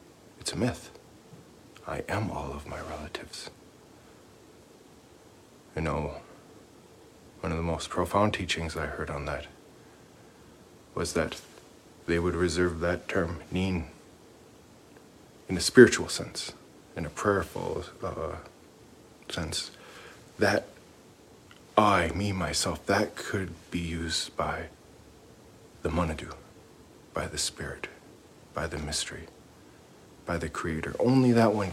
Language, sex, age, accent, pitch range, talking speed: English, male, 40-59, American, 80-105 Hz, 115 wpm